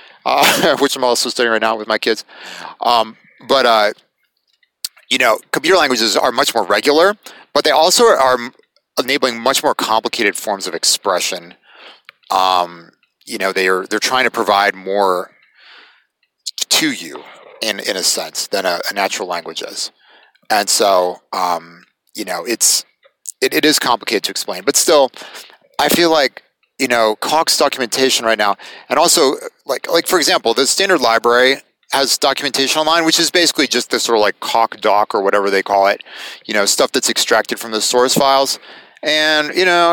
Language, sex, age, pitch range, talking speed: English, male, 30-49, 110-150 Hz, 175 wpm